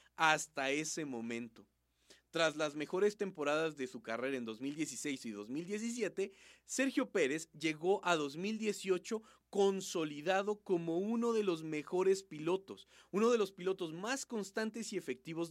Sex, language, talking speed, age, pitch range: male, Spanish, 130 wpm, 40-59, 145-200 Hz